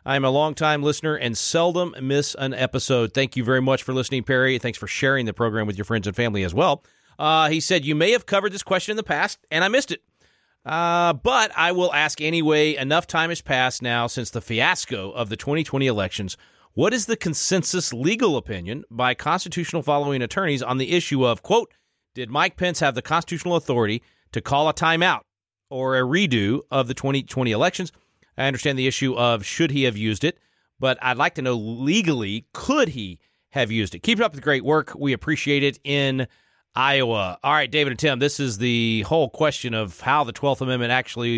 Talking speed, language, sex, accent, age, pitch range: 205 wpm, English, male, American, 40-59, 120-155 Hz